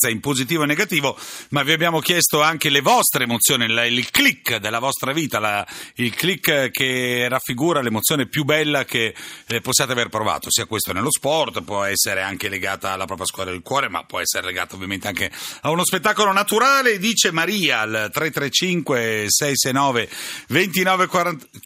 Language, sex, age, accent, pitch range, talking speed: Italian, male, 40-59, native, 115-170 Hz, 150 wpm